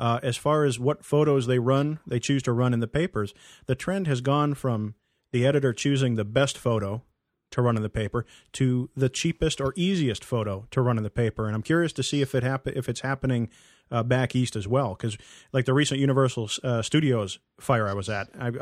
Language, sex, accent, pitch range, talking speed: English, male, American, 115-140 Hz, 225 wpm